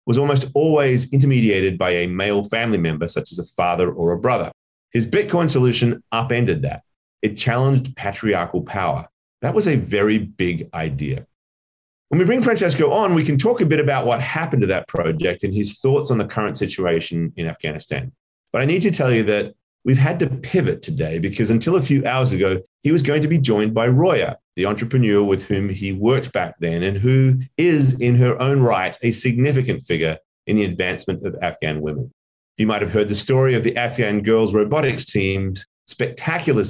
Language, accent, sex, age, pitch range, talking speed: English, Australian, male, 30-49, 95-135 Hz, 195 wpm